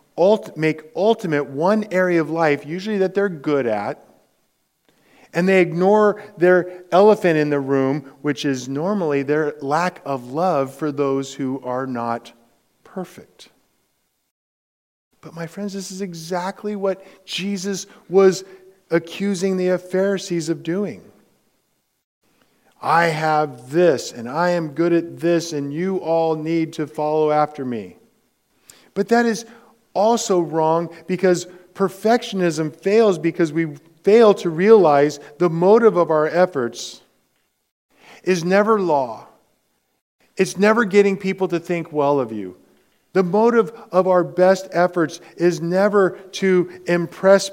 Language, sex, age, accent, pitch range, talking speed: English, male, 40-59, American, 145-190 Hz, 130 wpm